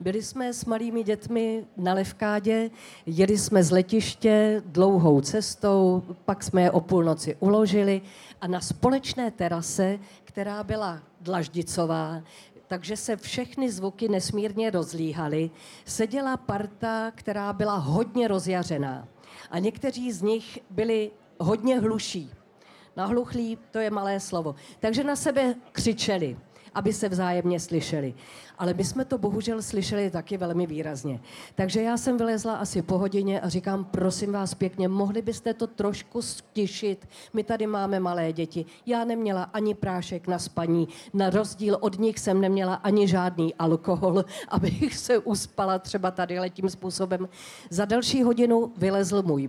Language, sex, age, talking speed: Czech, female, 40-59, 140 wpm